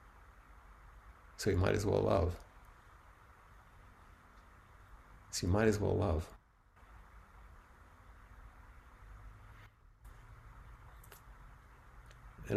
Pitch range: 85-105 Hz